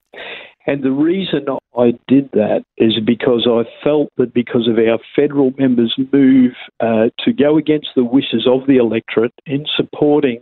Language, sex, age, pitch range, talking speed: English, male, 50-69, 125-140 Hz, 160 wpm